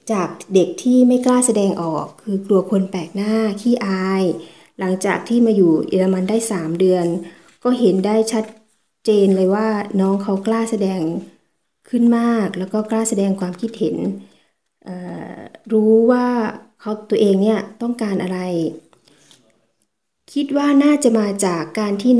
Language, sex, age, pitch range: Thai, female, 20-39, 185-225 Hz